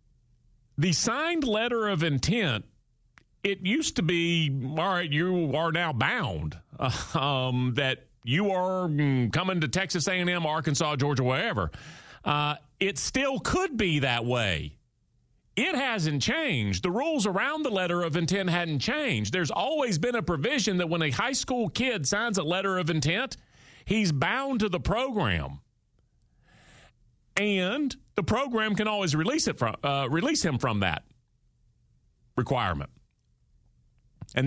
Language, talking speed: English, 140 wpm